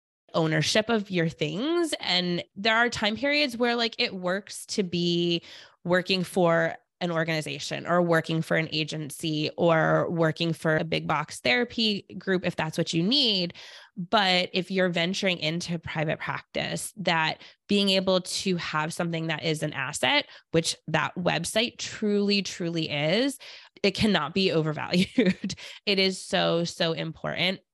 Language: English